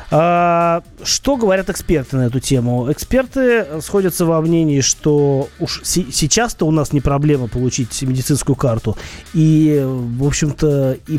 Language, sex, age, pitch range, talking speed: Russian, male, 20-39, 125-170 Hz, 130 wpm